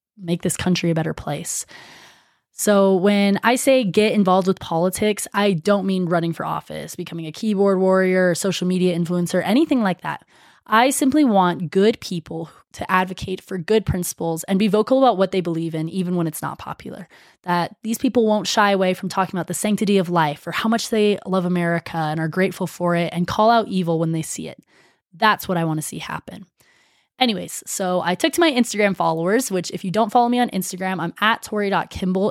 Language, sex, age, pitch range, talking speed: English, female, 20-39, 175-215 Hz, 205 wpm